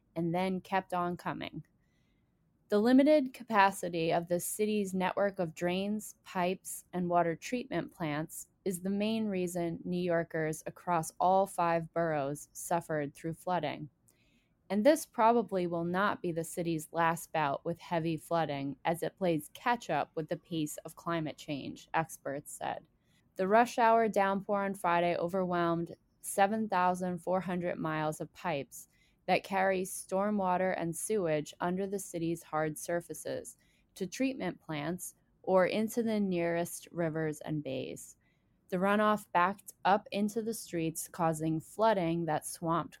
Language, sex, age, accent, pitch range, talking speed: English, female, 20-39, American, 165-195 Hz, 140 wpm